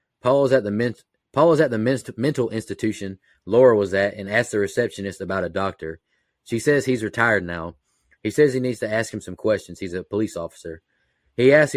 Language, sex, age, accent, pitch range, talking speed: English, male, 30-49, American, 95-120 Hz, 215 wpm